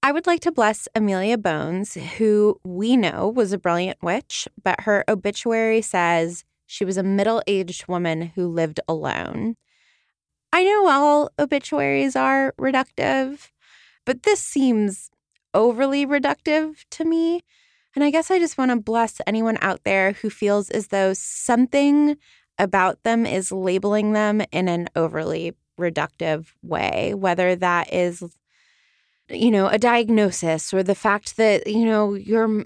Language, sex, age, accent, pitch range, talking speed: English, female, 20-39, American, 180-225 Hz, 145 wpm